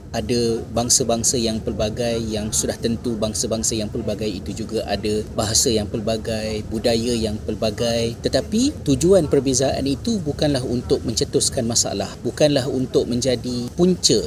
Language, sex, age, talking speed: Malay, male, 30-49, 130 wpm